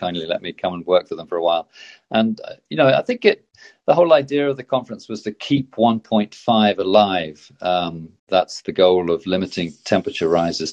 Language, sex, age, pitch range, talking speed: English, male, 40-59, 90-115 Hz, 215 wpm